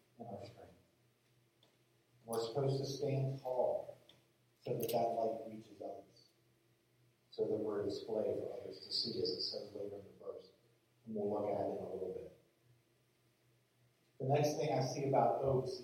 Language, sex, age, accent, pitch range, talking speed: English, male, 40-59, American, 115-135 Hz, 170 wpm